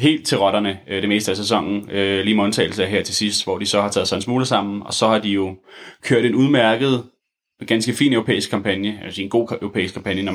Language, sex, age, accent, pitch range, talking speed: Danish, male, 20-39, native, 100-115 Hz, 230 wpm